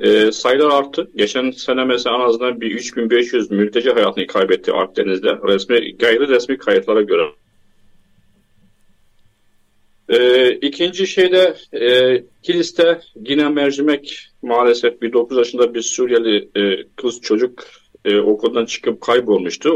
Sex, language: male, Turkish